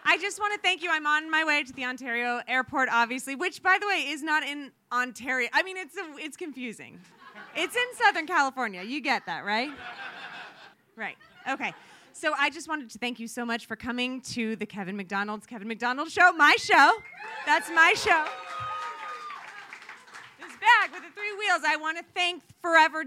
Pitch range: 285-385 Hz